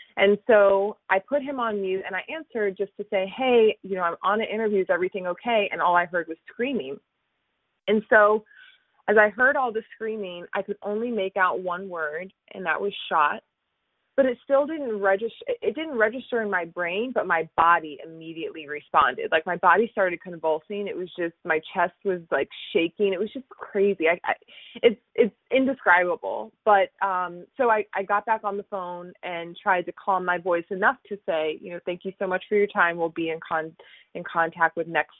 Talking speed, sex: 210 wpm, female